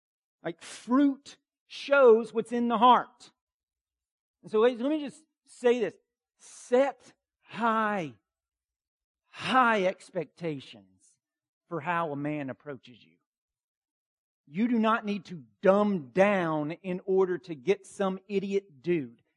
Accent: American